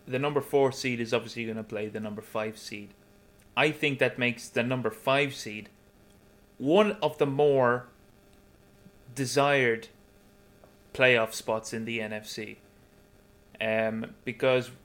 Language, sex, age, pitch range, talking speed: English, male, 20-39, 110-130 Hz, 135 wpm